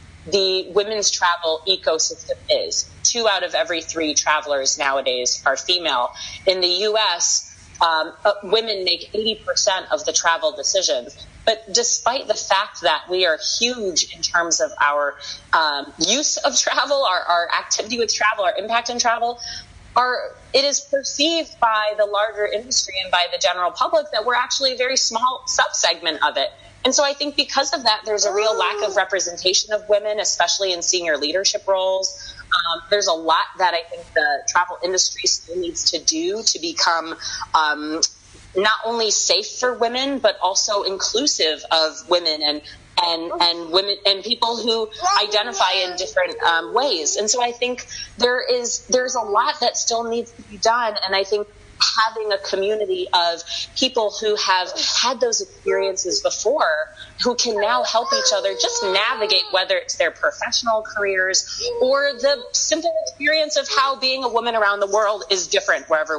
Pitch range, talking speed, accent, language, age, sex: 180-255 Hz, 170 wpm, American, English, 30-49, female